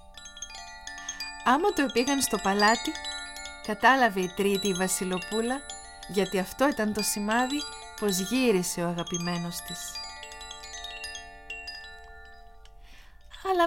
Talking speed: 90 wpm